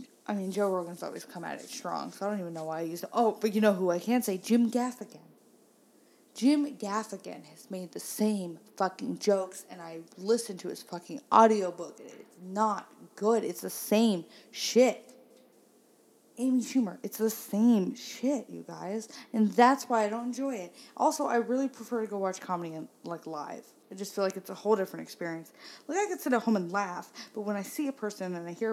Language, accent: English, American